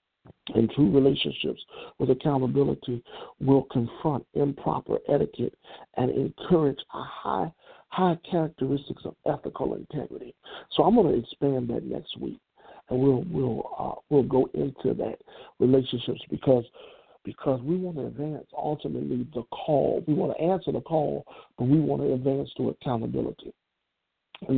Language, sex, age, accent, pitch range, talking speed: English, male, 50-69, American, 130-150 Hz, 140 wpm